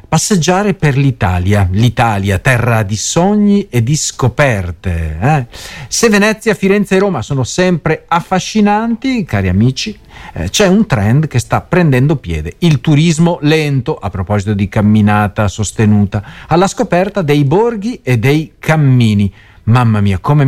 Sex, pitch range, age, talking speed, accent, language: male, 115-175 Hz, 50-69, 140 wpm, native, Italian